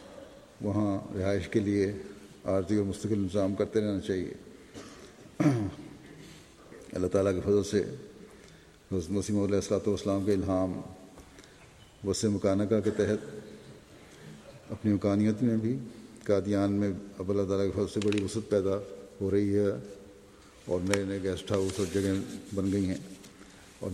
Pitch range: 100-110 Hz